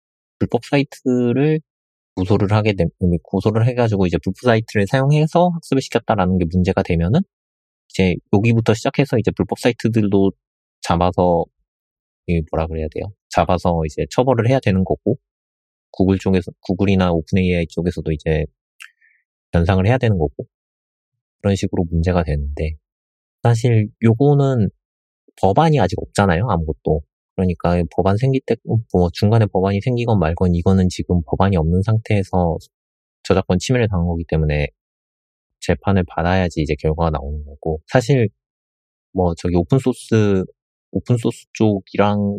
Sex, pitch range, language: male, 80-110 Hz, Korean